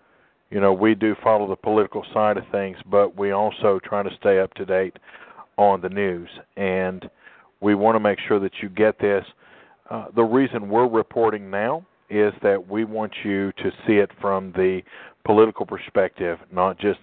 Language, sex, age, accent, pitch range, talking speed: English, male, 50-69, American, 100-115 Hz, 185 wpm